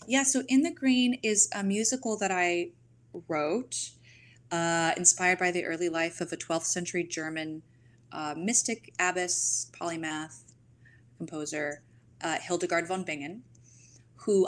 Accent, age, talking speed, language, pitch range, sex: American, 20-39, 135 wpm, English, 140-190 Hz, female